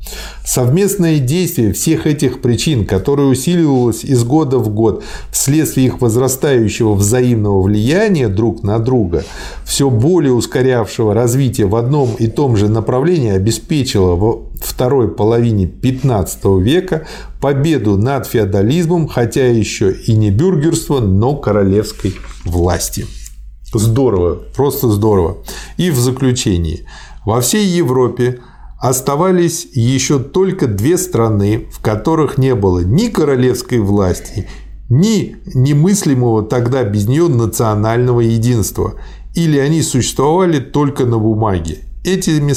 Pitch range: 105-140 Hz